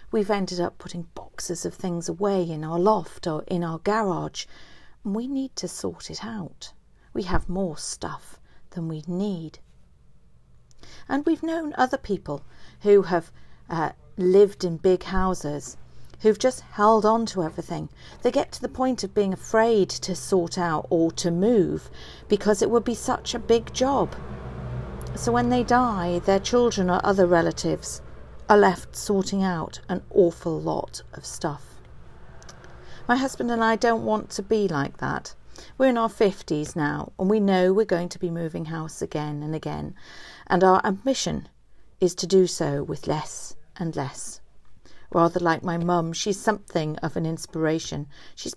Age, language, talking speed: 50-69, English, 165 wpm